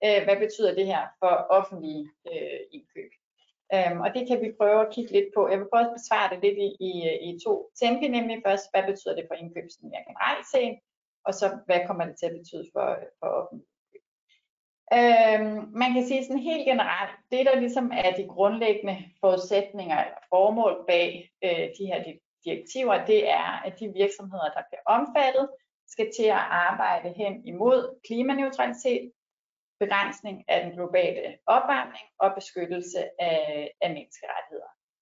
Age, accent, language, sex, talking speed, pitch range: 30-49, native, Danish, female, 170 wpm, 185-260 Hz